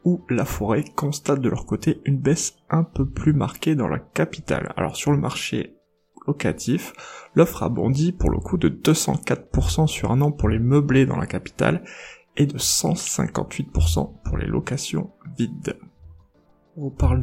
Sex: male